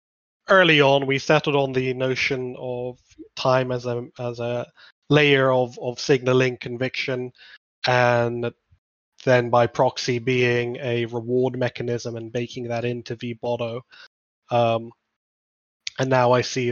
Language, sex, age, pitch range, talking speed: English, male, 20-39, 120-135 Hz, 130 wpm